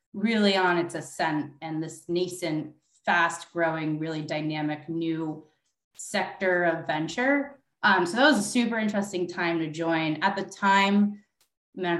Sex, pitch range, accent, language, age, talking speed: female, 155-180 Hz, American, English, 20-39, 140 wpm